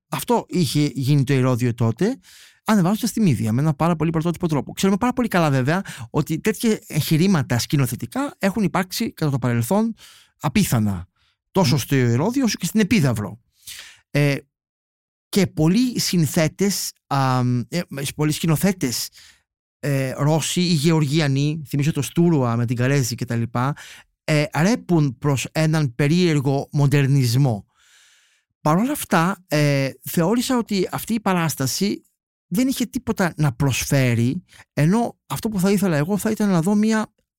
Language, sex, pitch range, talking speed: Greek, male, 130-175 Hz, 130 wpm